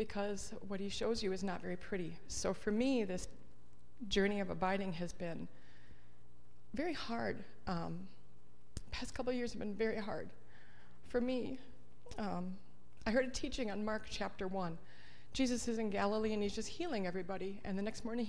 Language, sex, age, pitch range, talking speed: English, female, 30-49, 185-265 Hz, 170 wpm